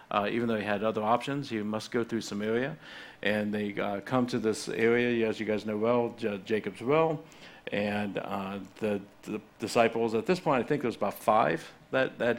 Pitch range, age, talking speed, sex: 105-130 Hz, 50-69, 205 wpm, male